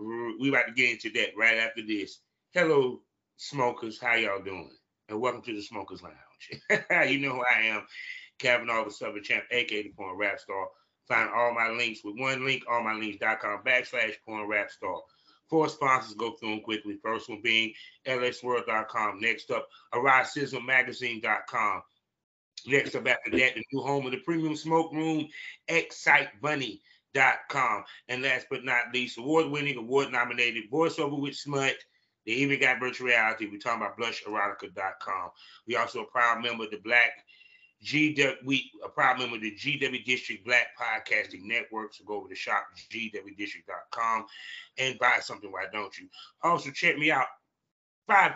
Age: 30-49